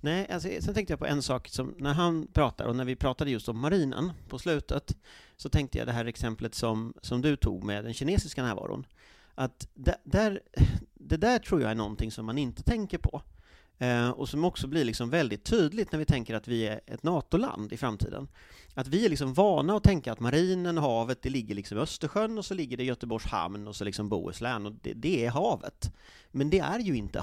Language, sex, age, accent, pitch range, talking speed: Swedish, male, 30-49, native, 115-180 Hz, 225 wpm